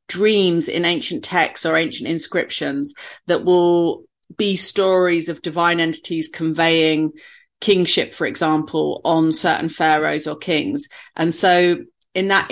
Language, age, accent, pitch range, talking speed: English, 40-59, British, 160-185 Hz, 130 wpm